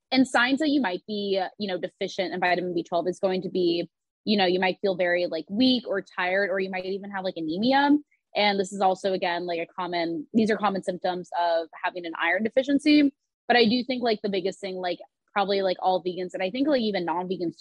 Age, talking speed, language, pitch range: 20-39, 235 wpm, English, 175-210 Hz